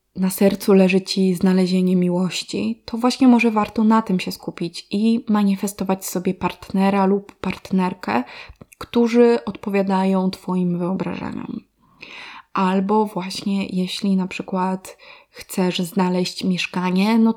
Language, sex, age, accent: Polish, female, 20-39, native